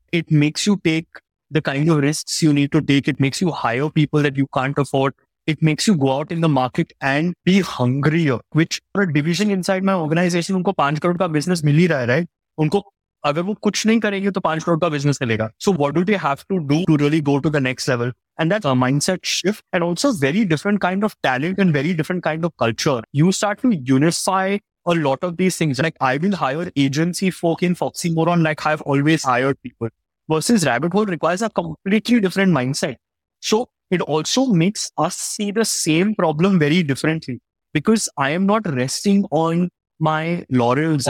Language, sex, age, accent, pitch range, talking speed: English, male, 30-49, Indian, 140-185 Hz, 180 wpm